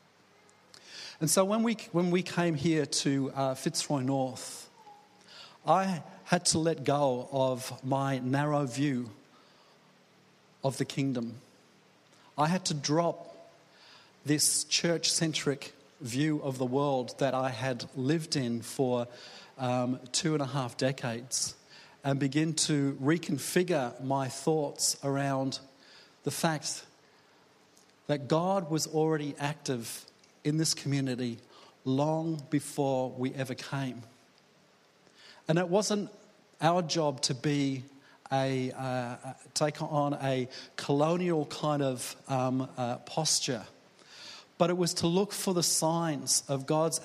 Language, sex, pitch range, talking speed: English, male, 130-160 Hz, 120 wpm